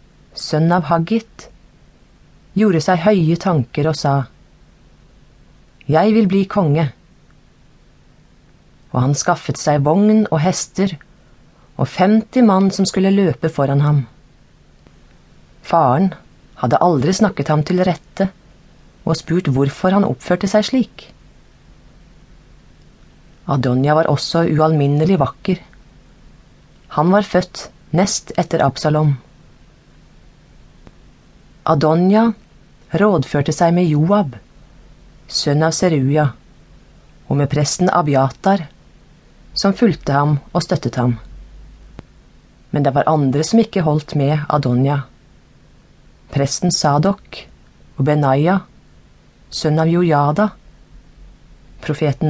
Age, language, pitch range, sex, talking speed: 30-49, English, 145-185 Hz, female, 100 wpm